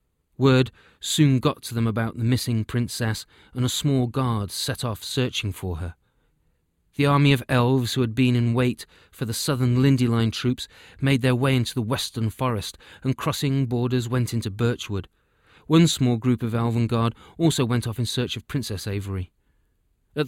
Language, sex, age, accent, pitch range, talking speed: English, male, 30-49, British, 100-130 Hz, 180 wpm